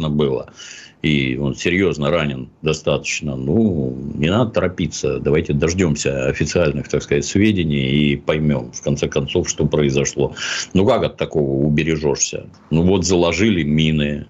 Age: 50-69